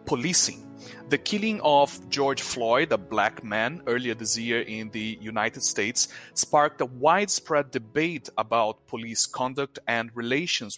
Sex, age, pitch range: male, 30-49, 110-140 Hz